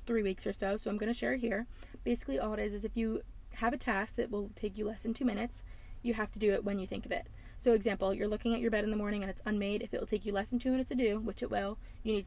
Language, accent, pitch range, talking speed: English, American, 195-235 Hz, 325 wpm